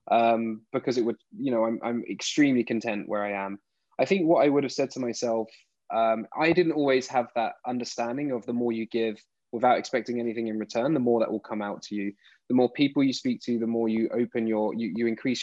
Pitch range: 115-135 Hz